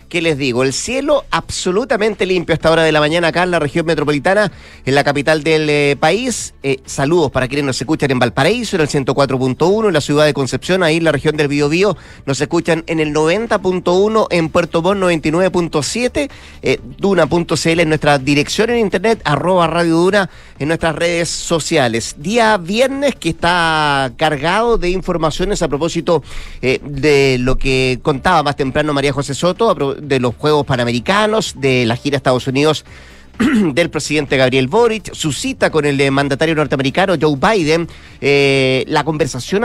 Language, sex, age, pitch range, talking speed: Spanish, male, 30-49, 145-185 Hz, 175 wpm